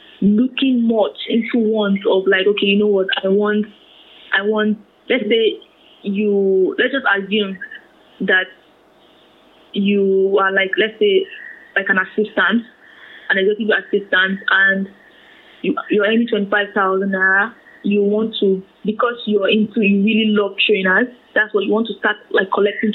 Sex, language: female, English